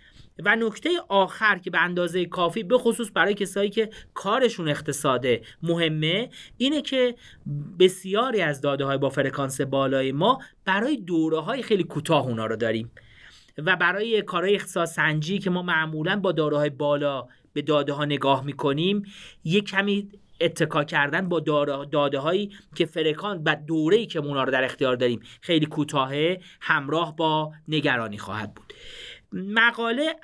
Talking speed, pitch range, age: 145 wpm, 145-220 Hz, 30-49